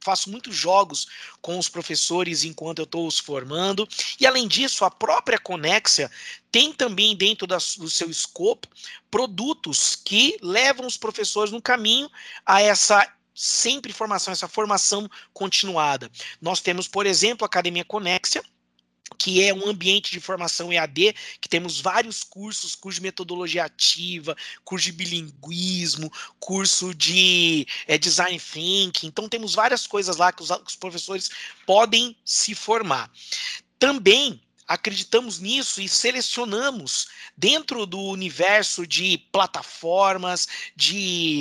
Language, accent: Portuguese, Brazilian